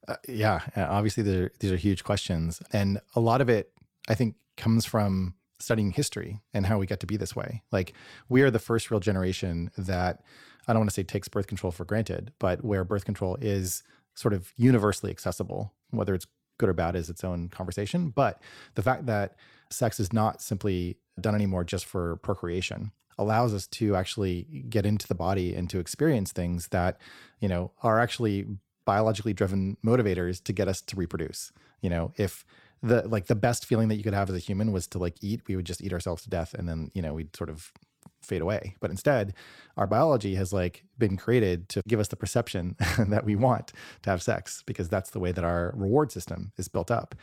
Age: 30-49